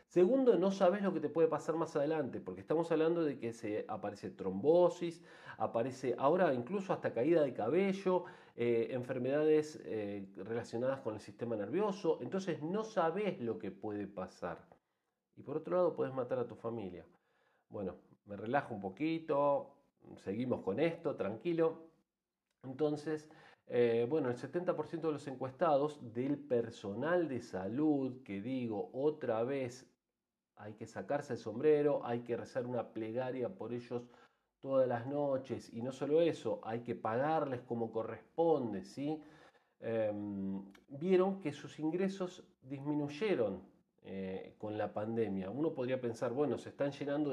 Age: 40-59